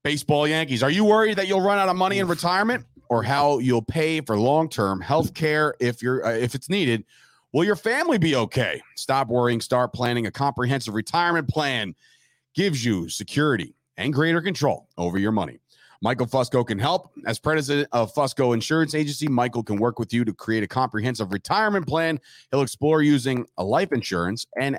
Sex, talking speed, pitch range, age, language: male, 180 wpm, 115-150 Hz, 40-59, English